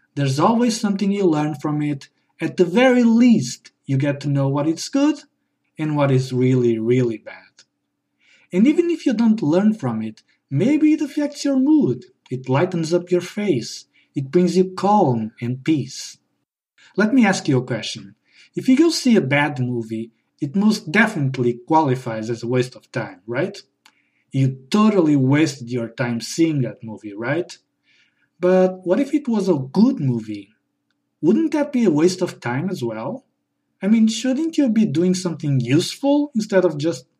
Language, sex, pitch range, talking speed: English, male, 125-210 Hz, 175 wpm